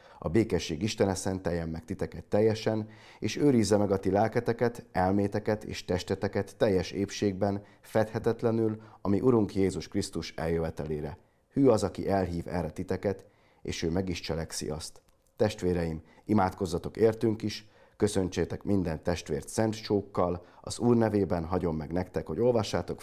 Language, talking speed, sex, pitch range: Hungarian, 135 wpm, male, 85-105 Hz